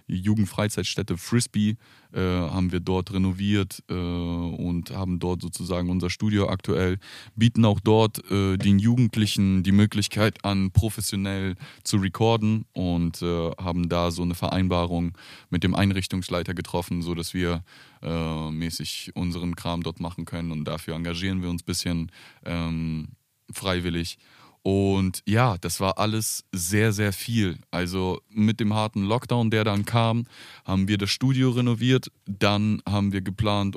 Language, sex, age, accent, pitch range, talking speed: German, male, 20-39, German, 90-110 Hz, 145 wpm